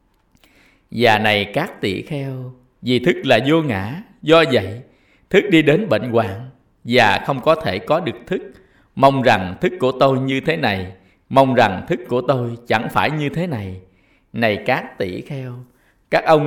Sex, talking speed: male, 175 wpm